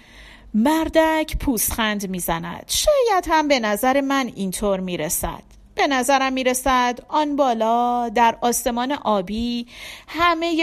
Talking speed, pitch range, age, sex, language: 105 wpm, 205-275 Hz, 40-59, female, Persian